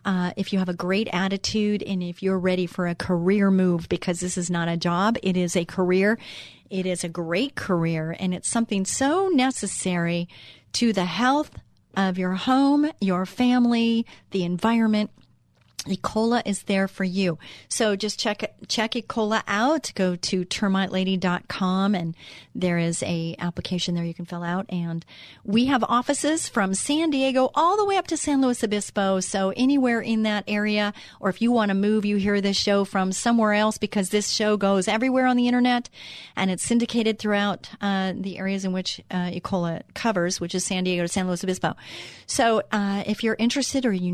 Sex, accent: female, American